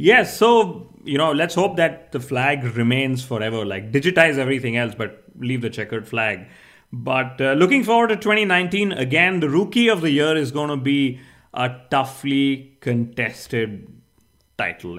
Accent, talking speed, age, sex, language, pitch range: Indian, 165 wpm, 30-49, male, English, 120-150 Hz